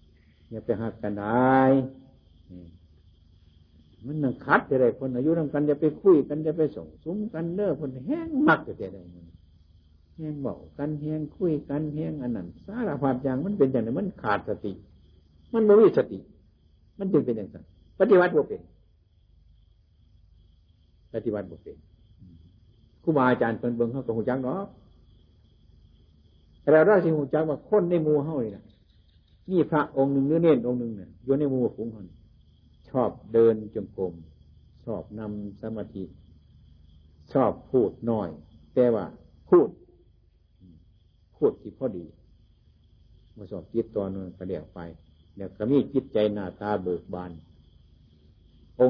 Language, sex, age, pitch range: Thai, male, 60-79, 85-125 Hz